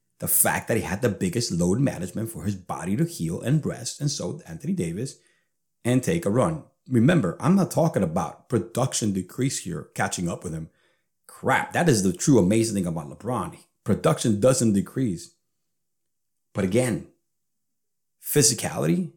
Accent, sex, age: American, male, 30-49